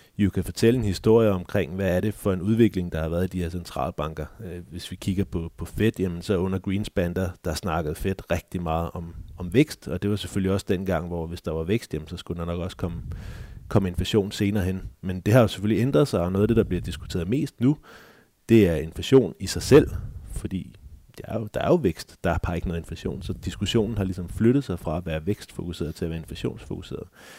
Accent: native